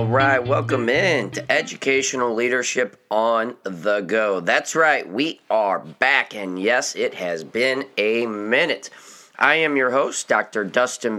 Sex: male